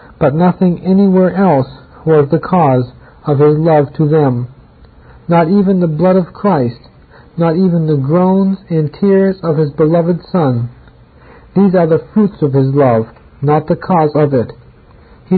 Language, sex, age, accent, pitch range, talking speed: English, male, 50-69, American, 135-175 Hz, 160 wpm